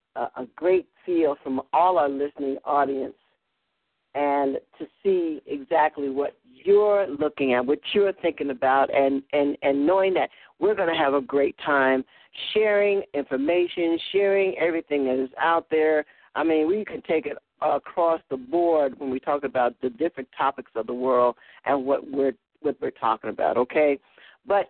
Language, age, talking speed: English, 50-69, 165 wpm